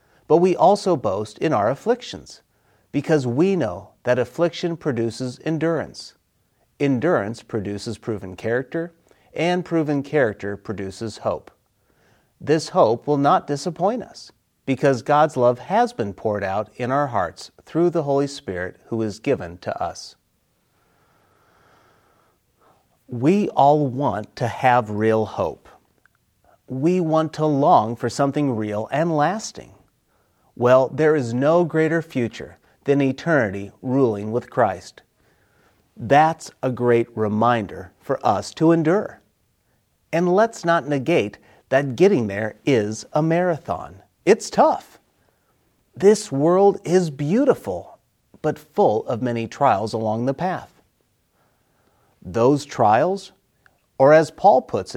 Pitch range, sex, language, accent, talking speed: 115-165 Hz, male, English, American, 125 wpm